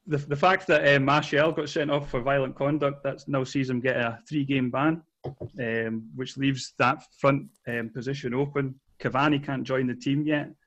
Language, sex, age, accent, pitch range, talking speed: English, male, 30-49, British, 115-135 Hz, 190 wpm